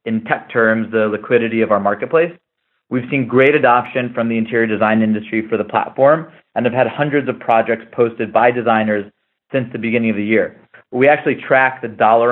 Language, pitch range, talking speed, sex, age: English, 110-130 Hz, 195 wpm, male, 30-49